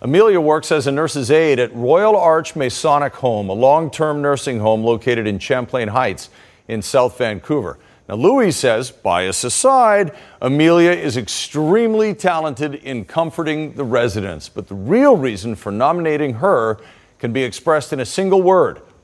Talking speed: 155 wpm